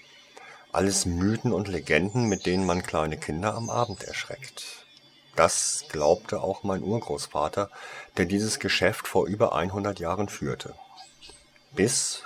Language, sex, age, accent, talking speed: German, male, 50-69, German, 125 wpm